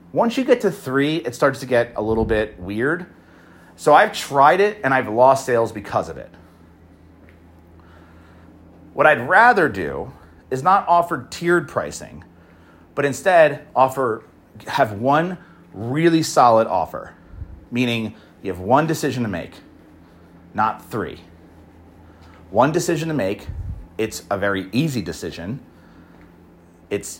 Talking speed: 130 wpm